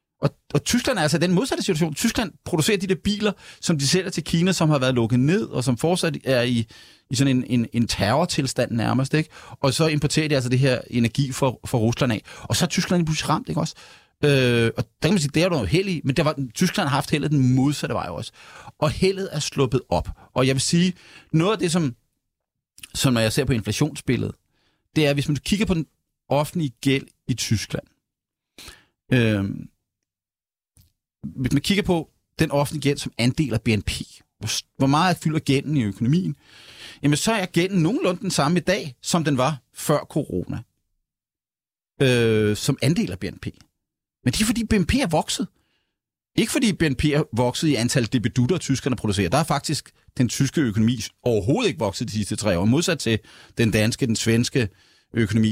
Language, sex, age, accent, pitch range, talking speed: Danish, male, 30-49, native, 120-165 Hz, 200 wpm